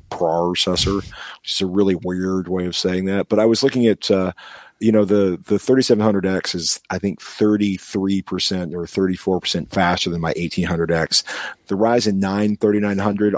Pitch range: 85-105 Hz